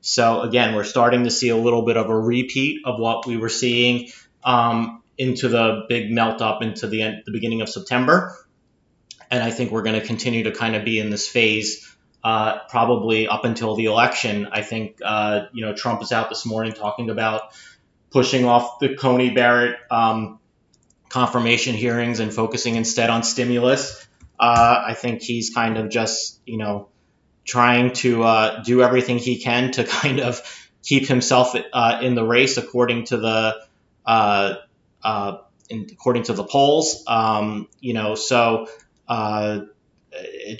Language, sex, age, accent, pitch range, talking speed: English, male, 30-49, American, 110-125 Hz, 170 wpm